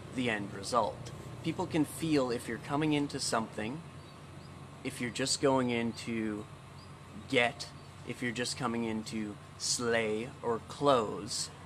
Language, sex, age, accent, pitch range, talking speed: English, male, 30-49, American, 115-145 Hz, 140 wpm